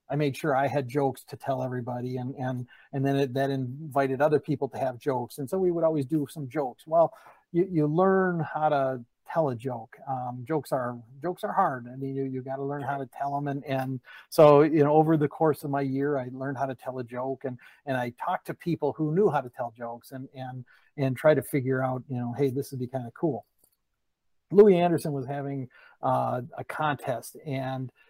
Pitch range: 130-155 Hz